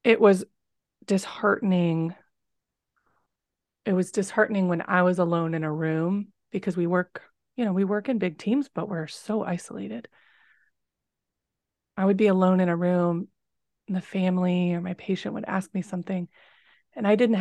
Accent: American